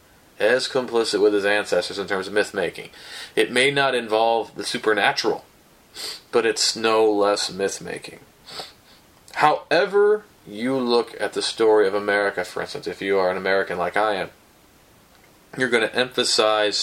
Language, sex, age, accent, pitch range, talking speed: English, male, 30-49, American, 100-110 Hz, 150 wpm